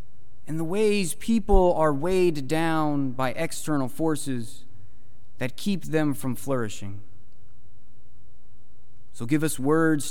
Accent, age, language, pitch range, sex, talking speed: American, 30-49, English, 110-165 Hz, male, 115 wpm